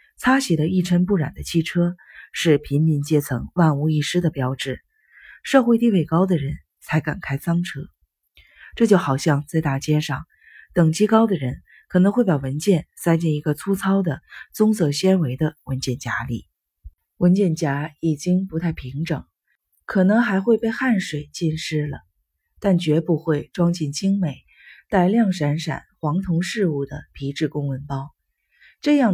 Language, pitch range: Chinese, 140-190 Hz